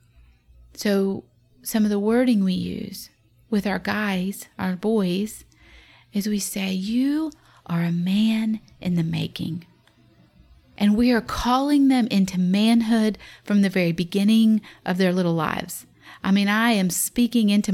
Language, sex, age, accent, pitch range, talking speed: English, female, 40-59, American, 175-225 Hz, 145 wpm